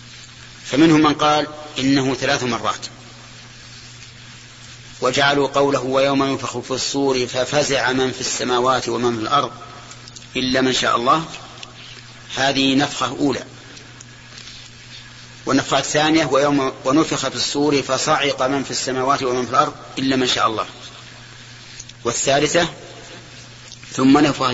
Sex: male